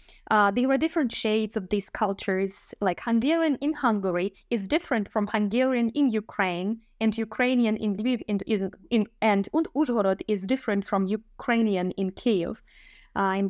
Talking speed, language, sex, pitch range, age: 140 wpm, English, female, 210-260 Hz, 20-39